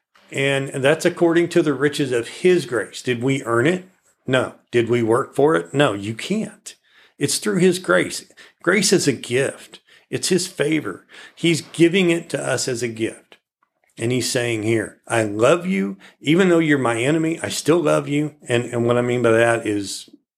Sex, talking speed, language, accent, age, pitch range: male, 190 wpm, English, American, 40-59, 115-160 Hz